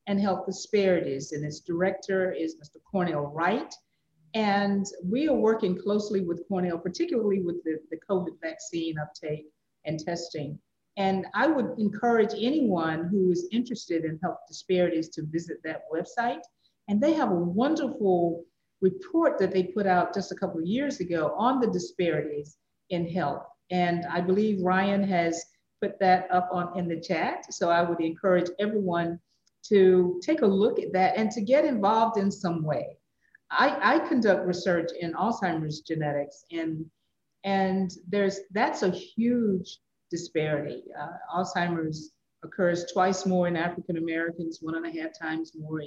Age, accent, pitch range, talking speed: 50-69, American, 165-200 Hz, 155 wpm